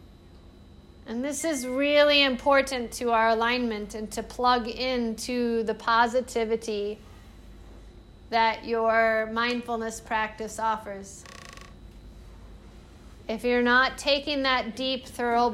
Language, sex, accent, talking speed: English, female, American, 100 wpm